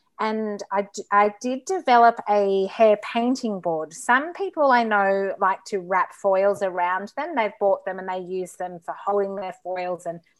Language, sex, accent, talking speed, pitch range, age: English, female, Australian, 180 wpm, 180-220 Hz, 30-49